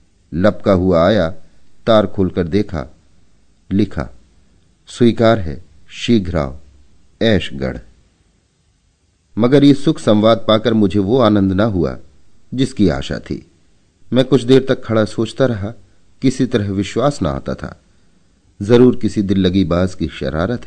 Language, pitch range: Hindi, 85-110 Hz